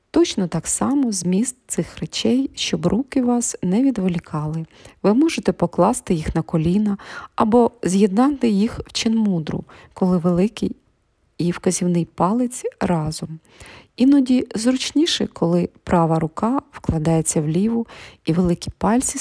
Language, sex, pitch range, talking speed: Ukrainian, female, 165-230 Hz, 120 wpm